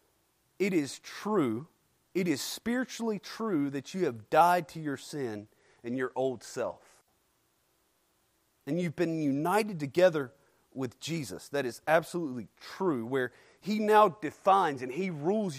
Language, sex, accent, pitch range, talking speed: English, male, American, 130-180 Hz, 140 wpm